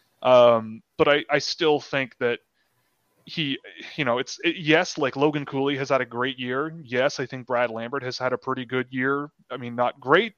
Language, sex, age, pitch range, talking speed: English, male, 20-39, 120-145 Hz, 200 wpm